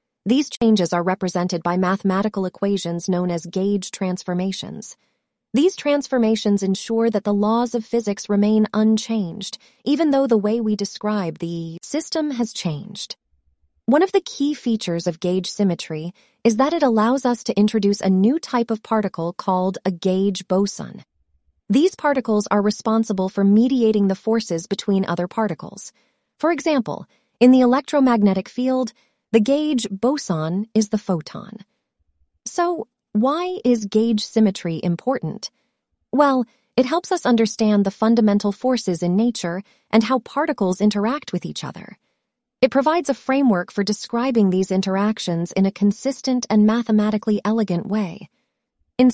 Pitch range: 190-245 Hz